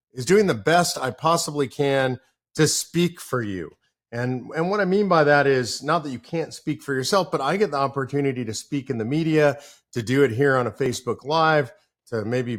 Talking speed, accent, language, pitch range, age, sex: 220 wpm, American, English, 125-160 Hz, 40-59, male